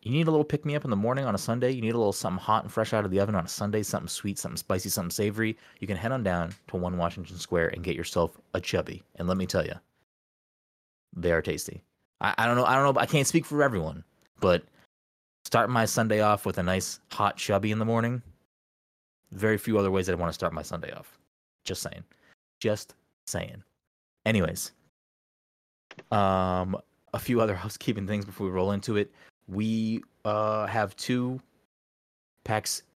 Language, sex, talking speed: English, male, 200 wpm